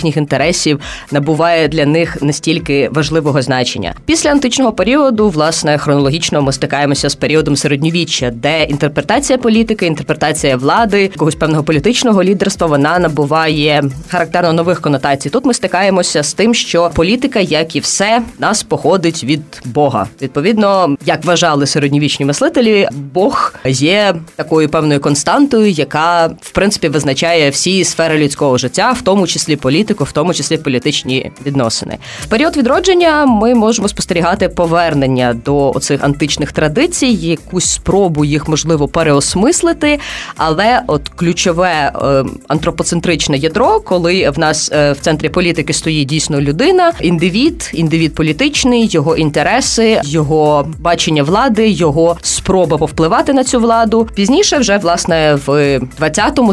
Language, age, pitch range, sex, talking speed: Ukrainian, 20-39, 150-195 Hz, female, 130 wpm